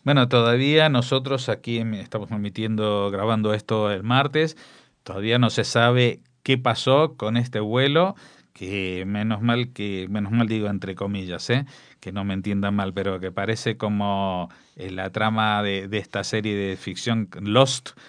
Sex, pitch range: male, 105-130 Hz